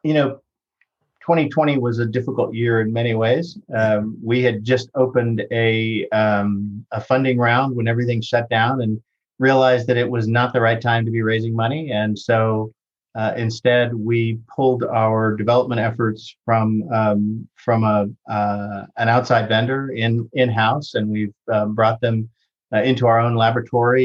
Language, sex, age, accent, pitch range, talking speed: English, male, 50-69, American, 105-125 Hz, 165 wpm